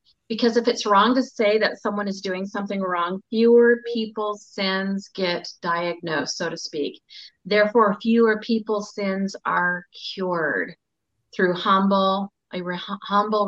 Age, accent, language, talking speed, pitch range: 40-59, American, English, 135 wpm, 185-215 Hz